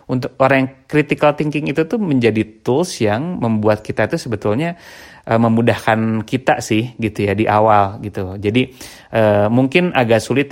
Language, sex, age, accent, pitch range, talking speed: Indonesian, male, 30-49, native, 105-125 Hz, 160 wpm